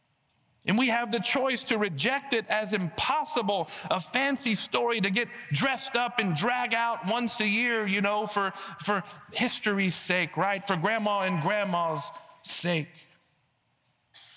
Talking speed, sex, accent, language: 145 wpm, male, American, English